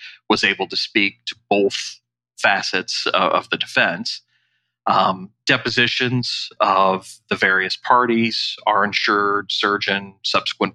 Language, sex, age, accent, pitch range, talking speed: English, male, 40-59, American, 85-110 Hz, 110 wpm